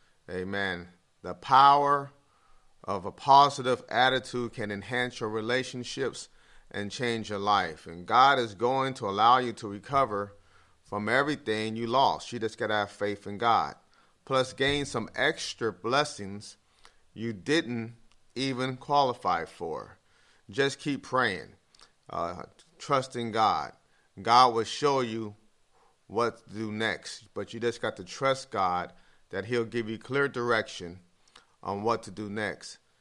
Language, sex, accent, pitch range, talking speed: English, male, American, 105-125 Hz, 140 wpm